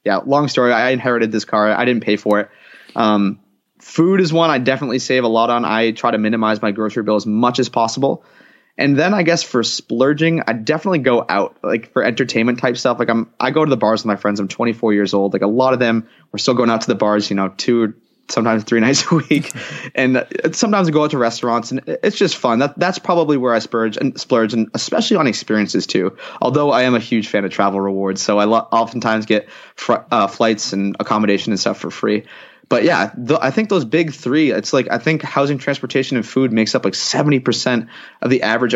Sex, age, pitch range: male, 20-39, 110-135 Hz